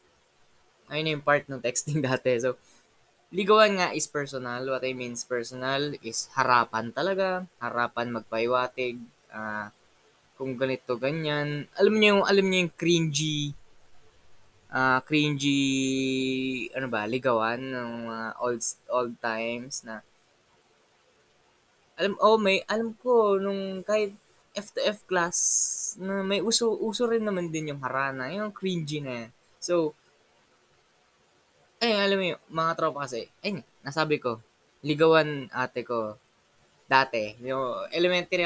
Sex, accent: female, native